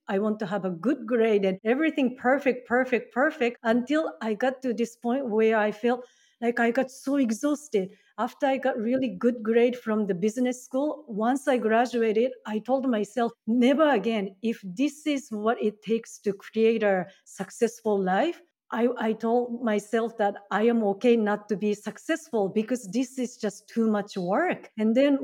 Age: 40-59